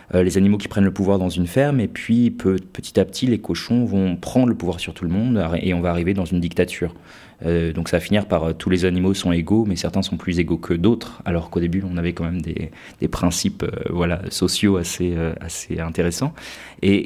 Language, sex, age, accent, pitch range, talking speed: English, male, 30-49, French, 85-110 Hz, 245 wpm